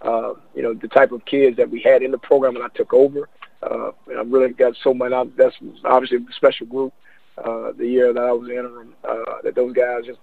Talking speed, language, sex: 240 wpm, English, male